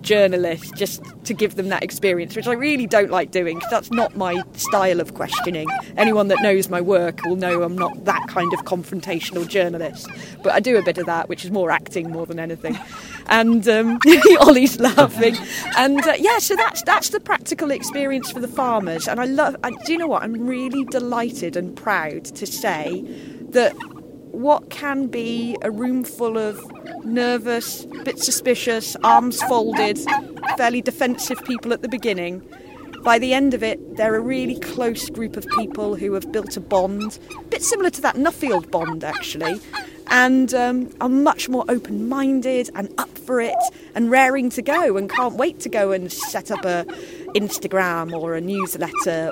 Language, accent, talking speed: English, British, 180 wpm